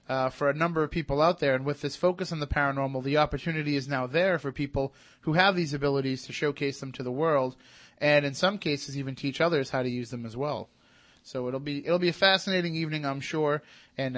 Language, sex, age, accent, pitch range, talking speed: English, male, 30-49, American, 140-165 Hz, 250 wpm